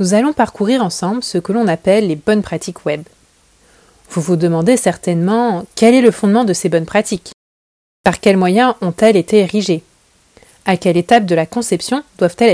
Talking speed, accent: 175 wpm, French